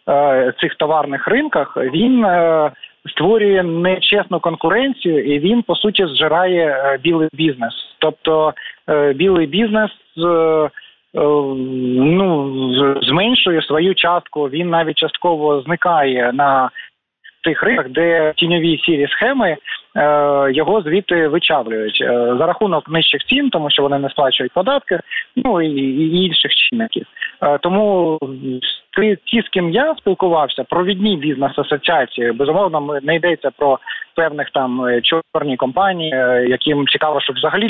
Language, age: Ukrainian, 20-39